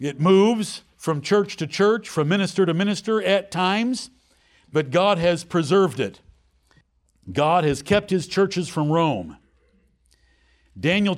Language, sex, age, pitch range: English, male, 60-79, 170-210 Hz